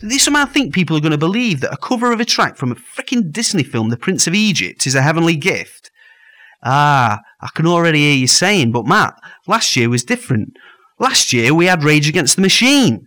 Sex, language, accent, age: male, English, British, 30-49